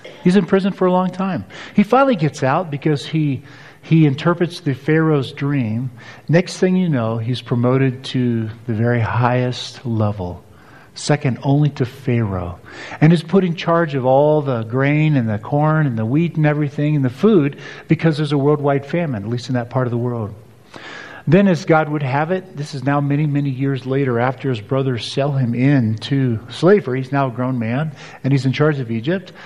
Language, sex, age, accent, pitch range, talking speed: English, male, 50-69, American, 125-155 Hz, 200 wpm